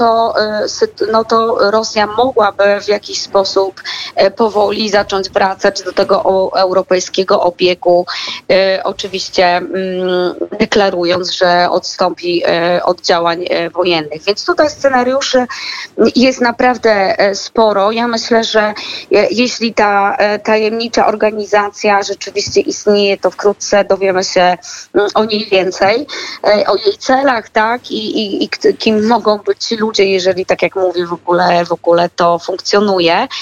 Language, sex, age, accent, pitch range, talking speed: Polish, female, 20-39, native, 185-225 Hz, 115 wpm